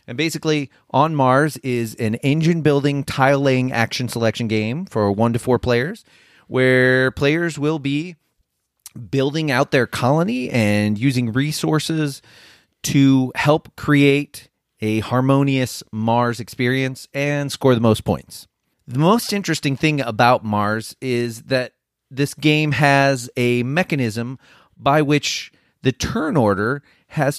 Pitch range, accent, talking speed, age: 120-150 Hz, American, 130 wpm, 30-49